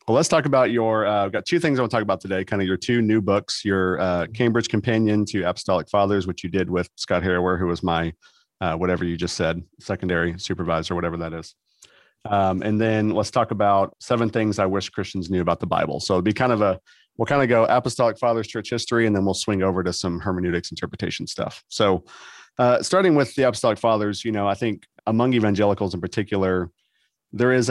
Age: 40-59